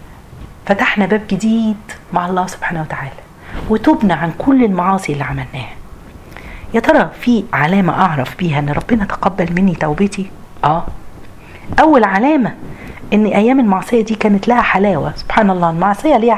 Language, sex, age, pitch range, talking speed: Arabic, female, 40-59, 170-225 Hz, 140 wpm